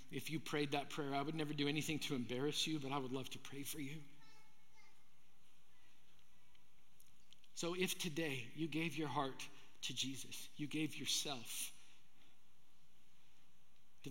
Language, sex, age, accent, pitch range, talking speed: English, male, 50-69, American, 140-160 Hz, 145 wpm